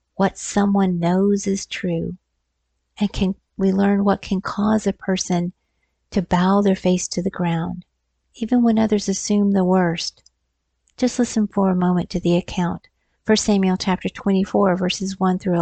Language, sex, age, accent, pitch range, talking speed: English, female, 50-69, American, 185-215 Hz, 160 wpm